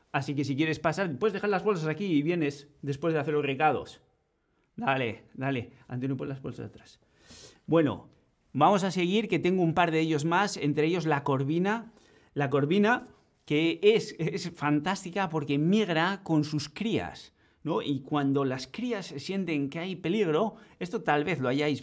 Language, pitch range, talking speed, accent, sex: Spanish, 135-180 Hz, 175 wpm, Spanish, male